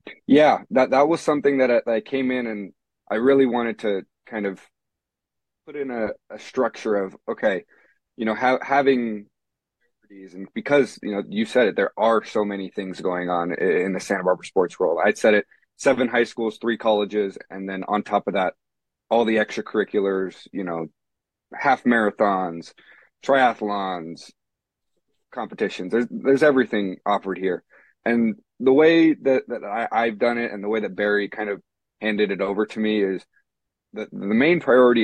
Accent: American